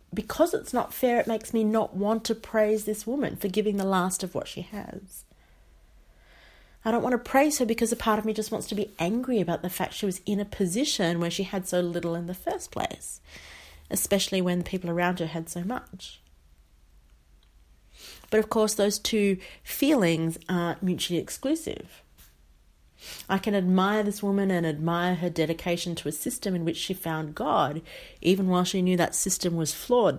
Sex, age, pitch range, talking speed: female, 30-49, 170-215 Hz, 195 wpm